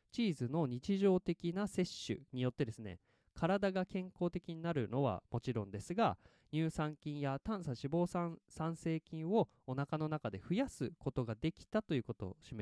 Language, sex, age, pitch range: Japanese, male, 20-39, 125-185 Hz